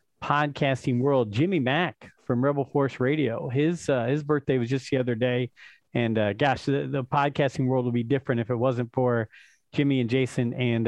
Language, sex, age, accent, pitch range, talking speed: English, male, 40-59, American, 125-155 Hz, 195 wpm